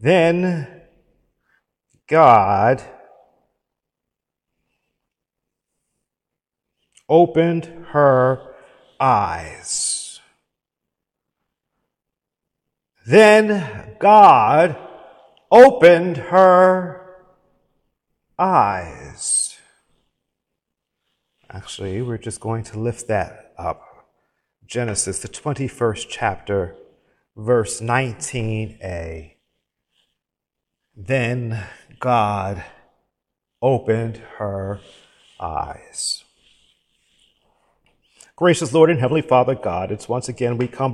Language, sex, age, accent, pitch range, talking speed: English, male, 50-69, American, 120-180 Hz, 60 wpm